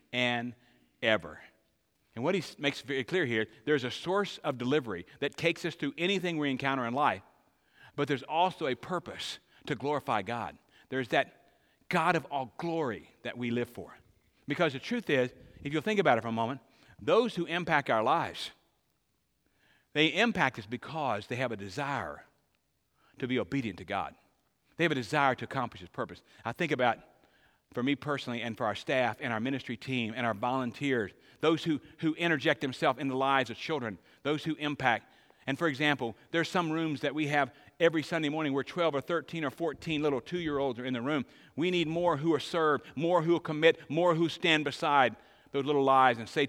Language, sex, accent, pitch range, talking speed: English, male, American, 120-160 Hz, 195 wpm